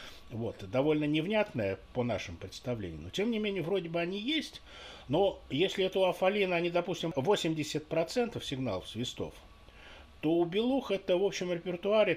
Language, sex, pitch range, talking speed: Russian, male, 115-170 Hz, 155 wpm